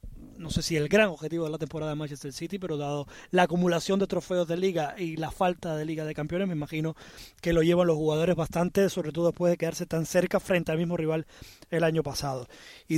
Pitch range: 160-200 Hz